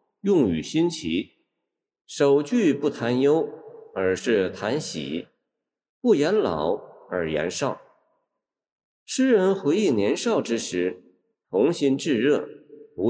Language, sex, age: Chinese, male, 50-69